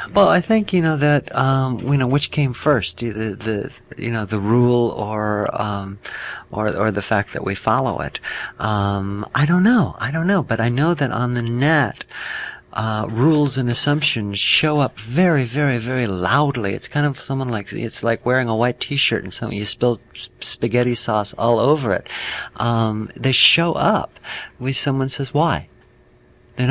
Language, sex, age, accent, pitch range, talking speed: English, male, 50-69, American, 110-145 Hz, 180 wpm